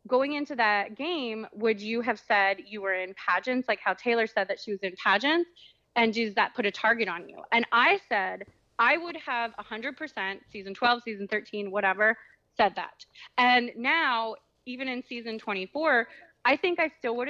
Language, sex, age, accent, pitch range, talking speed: English, female, 20-39, American, 205-275 Hz, 185 wpm